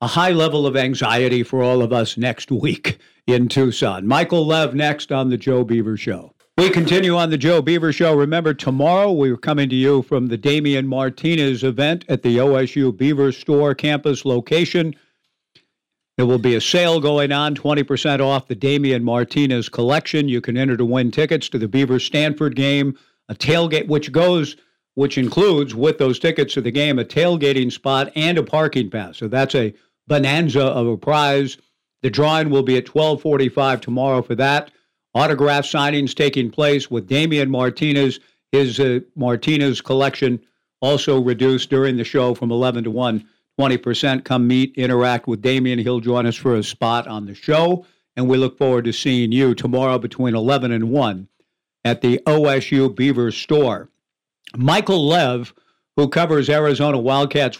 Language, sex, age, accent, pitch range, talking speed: English, male, 50-69, American, 125-150 Hz, 170 wpm